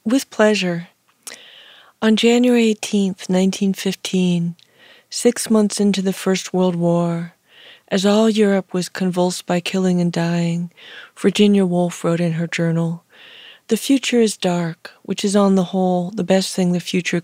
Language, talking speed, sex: English, 150 wpm, female